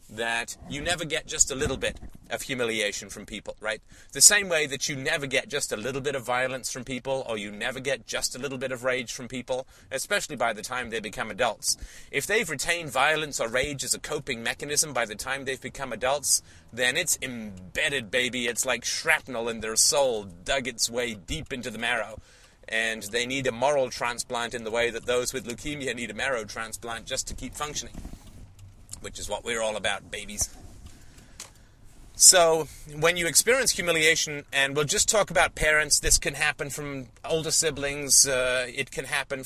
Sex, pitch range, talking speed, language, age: male, 110-140 Hz, 195 wpm, English, 30-49